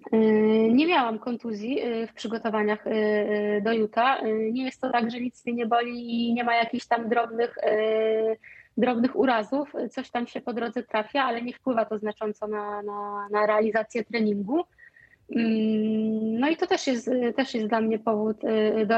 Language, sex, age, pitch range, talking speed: Polish, female, 20-39, 220-260 Hz, 160 wpm